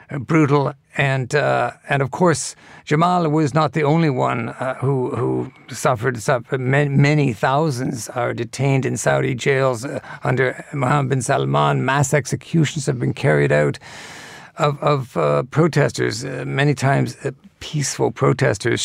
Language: English